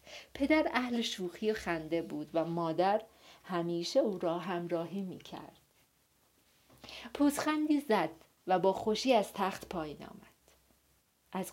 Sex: female